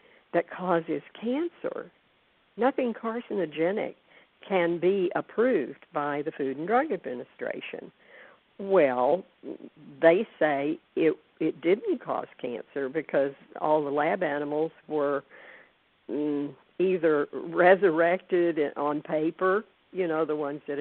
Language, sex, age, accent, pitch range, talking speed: English, female, 60-79, American, 145-185 Hz, 105 wpm